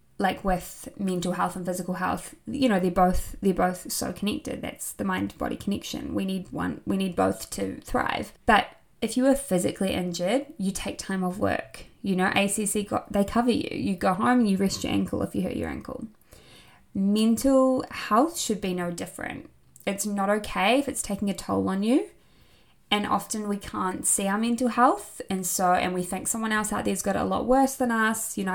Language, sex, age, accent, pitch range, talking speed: English, female, 20-39, Australian, 180-225 Hz, 210 wpm